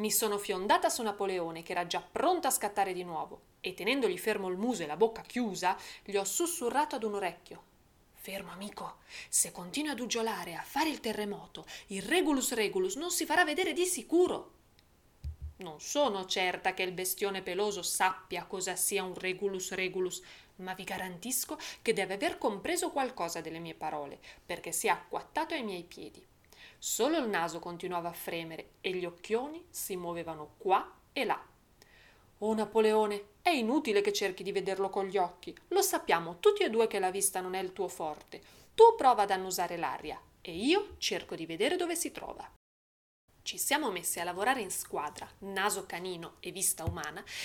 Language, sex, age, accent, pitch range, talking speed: Italian, female, 30-49, native, 185-295 Hz, 180 wpm